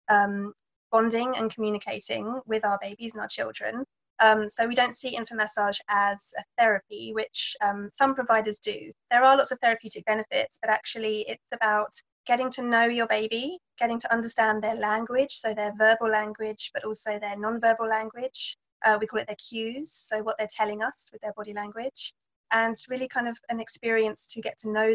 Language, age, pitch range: English, 20-39, 205-230 Hz